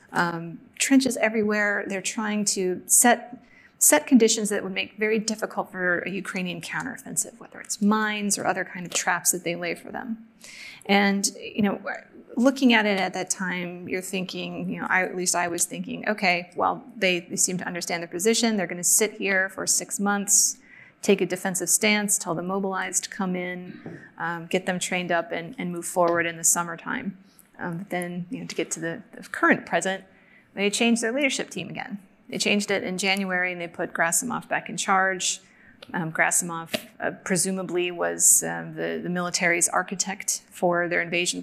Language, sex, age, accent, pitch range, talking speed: English, female, 30-49, American, 180-220 Hz, 185 wpm